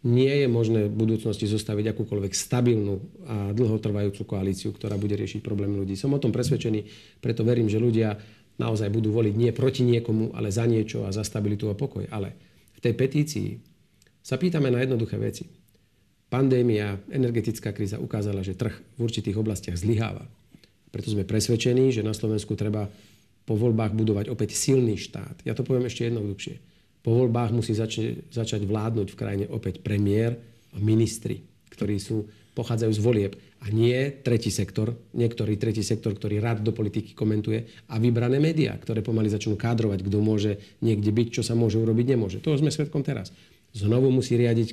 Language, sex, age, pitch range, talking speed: Slovak, male, 40-59, 105-120 Hz, 170 wpm